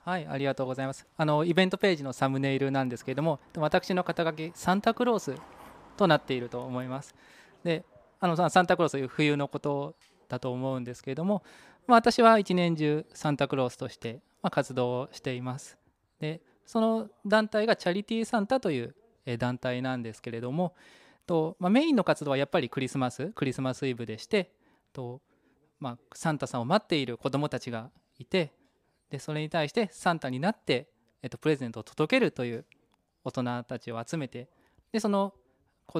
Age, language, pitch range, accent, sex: 20-39, Japanese, 125-180 Hz, native, male